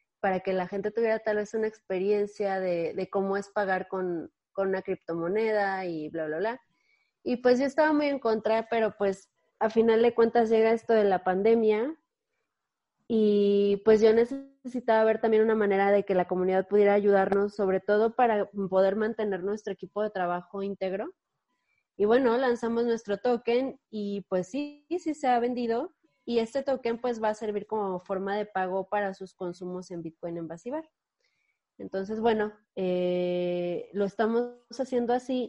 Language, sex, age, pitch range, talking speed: Spanish, female, 20-39, 190-235 Hz, 170 wpm